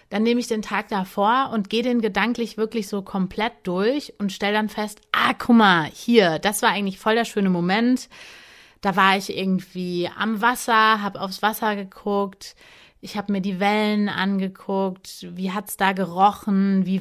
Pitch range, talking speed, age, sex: 180-215 Hz, 175 wpm, 30-49, female